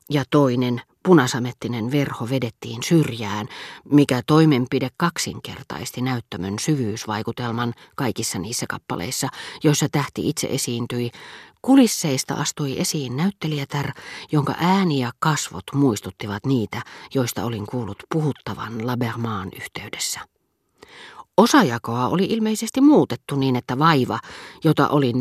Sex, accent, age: female, native, 40-59